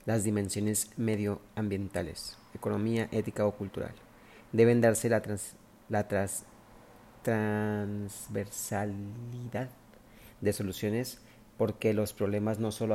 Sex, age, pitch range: male, 40-59, 100-115 Hz